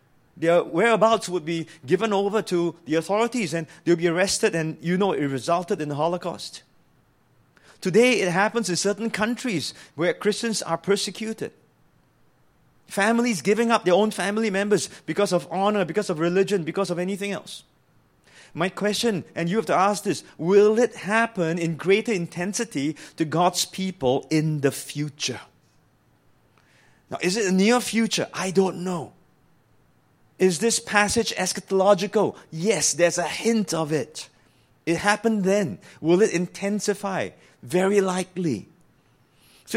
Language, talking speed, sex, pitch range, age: English, 145 wpm, male, 165-210 Hz, 30-49